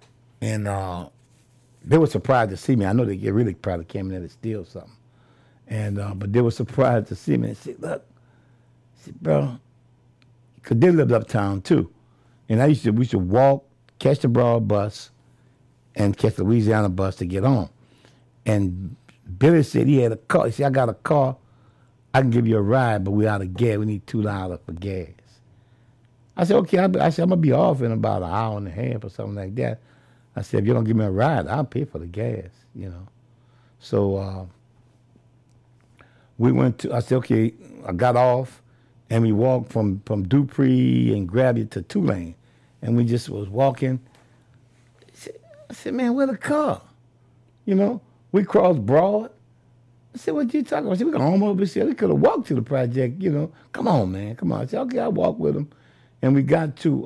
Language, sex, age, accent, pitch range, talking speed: English, male, 60-79, American, 110-130 Hz, 210 wpm